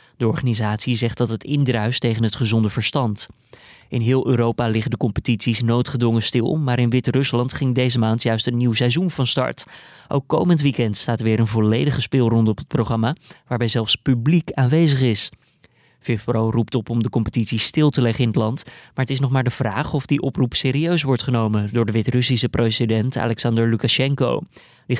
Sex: male